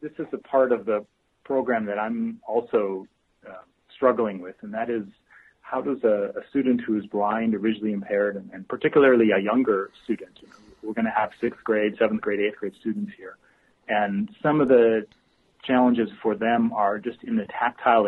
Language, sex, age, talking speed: English, male, 30-49, 195 wpm